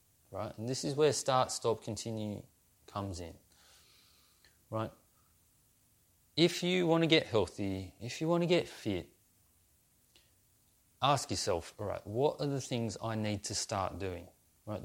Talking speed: 145 wpm